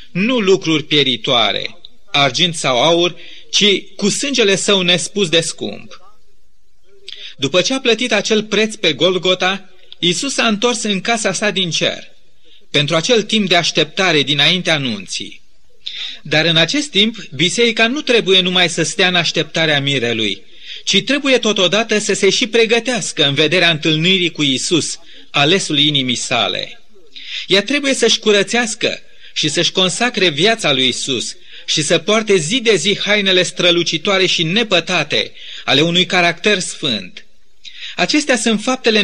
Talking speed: 140 wpm